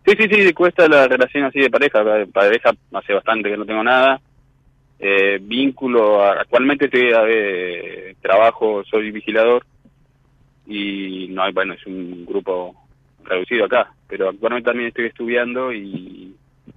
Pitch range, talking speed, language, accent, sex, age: 95-135 Hz, 145 wpm, Spanish, Argentinian, male, 20-39